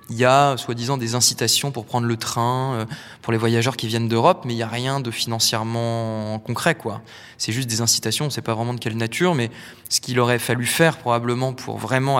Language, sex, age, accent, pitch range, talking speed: French, male, 20-39, French, 115-140 Hz, 225 wpm